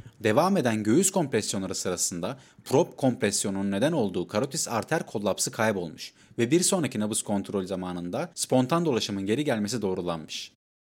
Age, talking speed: 30-49, 130 wpm